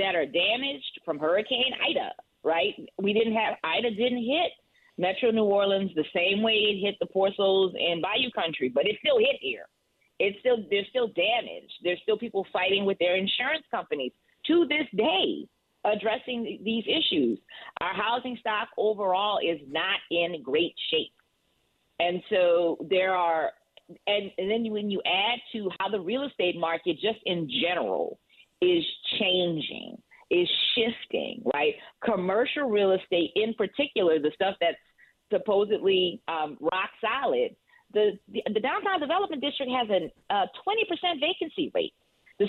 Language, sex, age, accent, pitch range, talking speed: English, female, 40-59, American, 190-280 Hz, 155 wpm